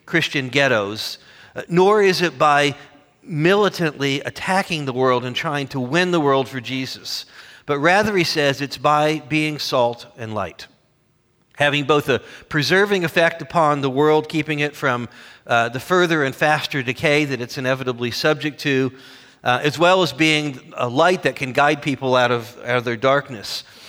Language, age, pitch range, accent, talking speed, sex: English, 40-59, 135-175 Hz, American, 165 wpm, male